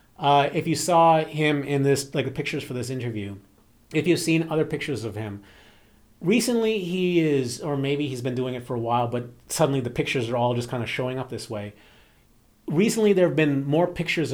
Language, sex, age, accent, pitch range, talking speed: English, male, 30-49, American, 120-170 Hz, 215 wpm